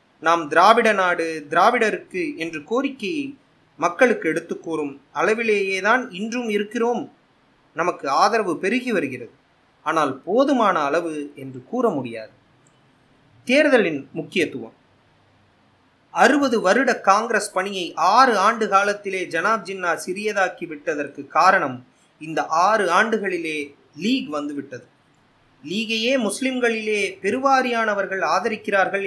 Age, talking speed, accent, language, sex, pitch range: 30-49, 90 wpm, native, Tamil, male, 180-250 Hz